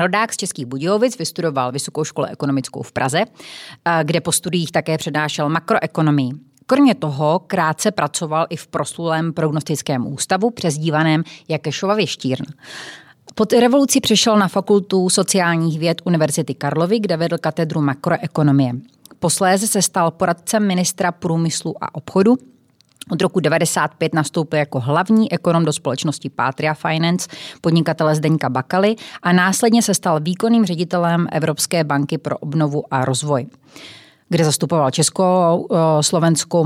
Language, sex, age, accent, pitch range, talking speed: Czech, female, 30-49, native, 150-180 Hz, 130 wpm